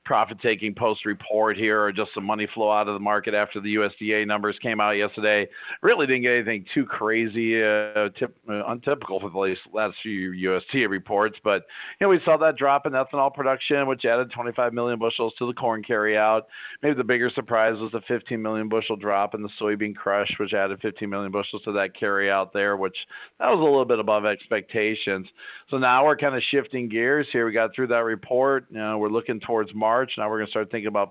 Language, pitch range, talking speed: English, 105-125 Hz, 205 wpm